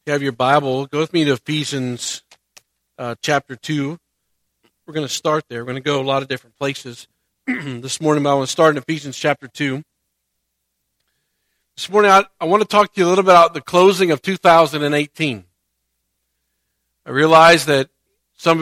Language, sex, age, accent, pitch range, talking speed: English, male, 40-59, American, 135-190 Hz, 185 wpm